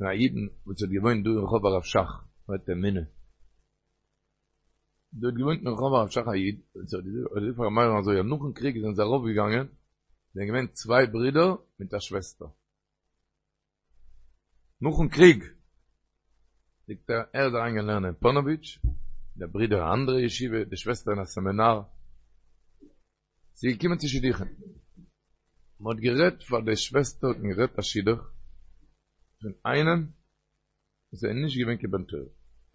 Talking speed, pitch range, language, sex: 95 wpm, 95-135 Hz, Hebrew, male